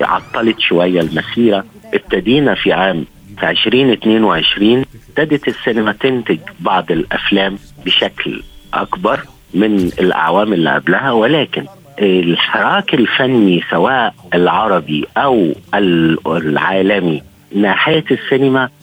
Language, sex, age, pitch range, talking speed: Arabic, male, 50-69, 95-115 Hz, 85 wpm